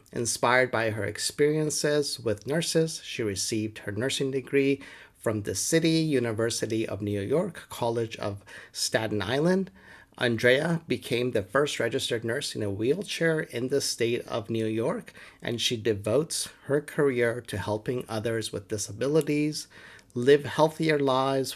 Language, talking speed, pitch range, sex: English, 140 wpm, 110-150 Hz, male